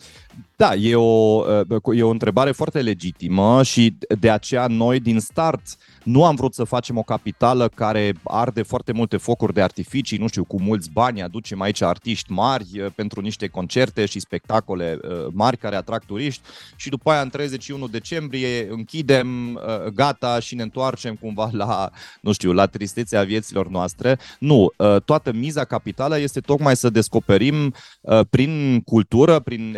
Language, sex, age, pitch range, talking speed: Romanian, male, 30-49, 105-130 Hz, 155 wpm